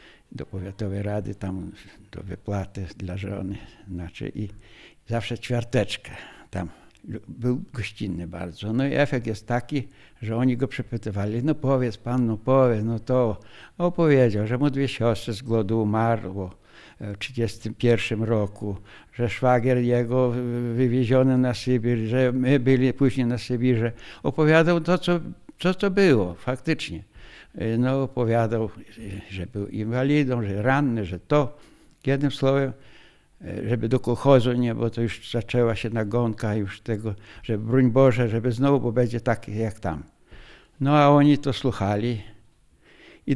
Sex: male